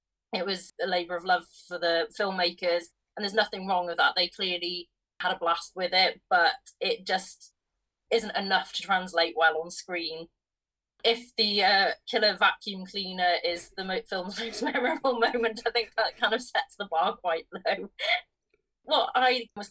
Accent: British